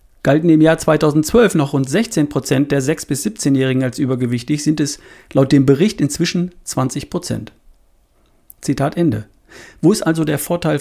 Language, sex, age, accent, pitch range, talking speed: German, male, 40-59, German, 125-170 Hz, 150 wpm